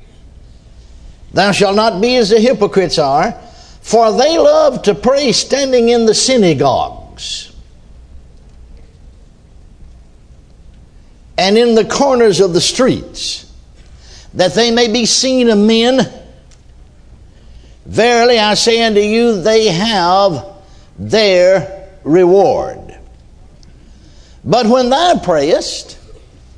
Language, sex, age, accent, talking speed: English, male, 60-79, American, 100 wpm